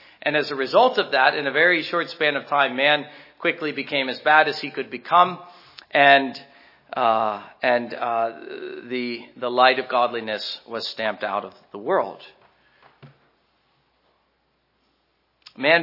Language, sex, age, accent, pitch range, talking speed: English, male, 40-59, American, 145-190 Hz, 145 wpm